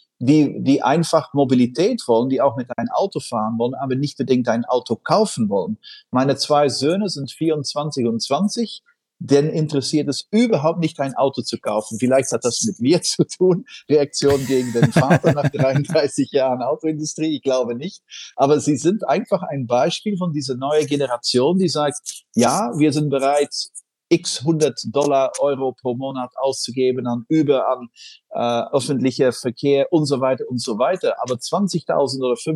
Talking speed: 170 wpm